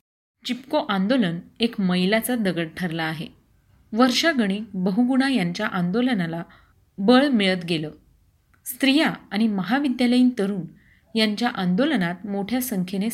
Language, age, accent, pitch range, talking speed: Marathi, 30-49, native, 185-245 Hz, 100 wpm